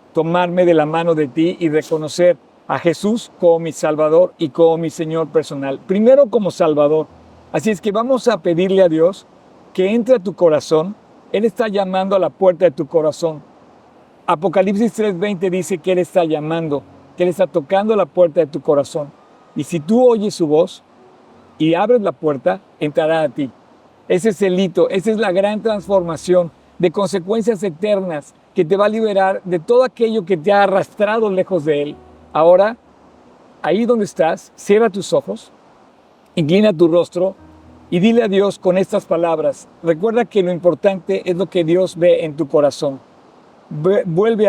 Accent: Mexican